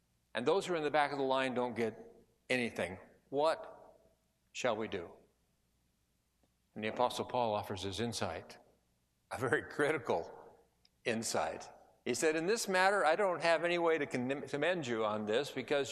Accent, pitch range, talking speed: American, 100-135 Hz, 165 wpm